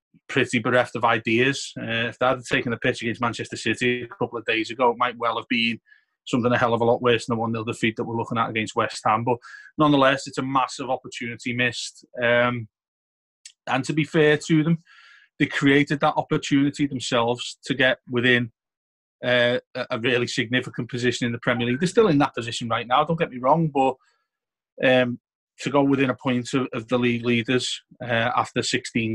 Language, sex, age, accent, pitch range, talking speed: English, male, 30-49, British, 120-140 Hz, 200 wpm